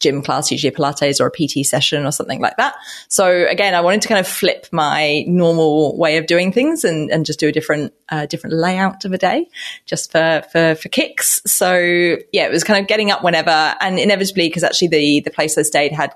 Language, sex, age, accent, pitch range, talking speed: English, female, 20-39, British, 150-190 Hz, 230 wpm